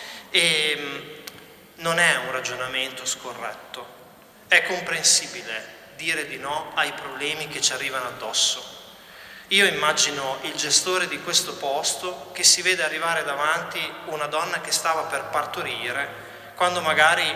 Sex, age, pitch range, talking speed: male, 30-49, 145-170 Hz, 130 wpm